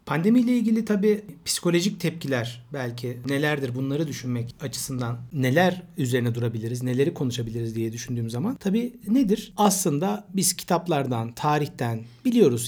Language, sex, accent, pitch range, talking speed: Turkish, male, native, 125-175 Hz, 120 wpm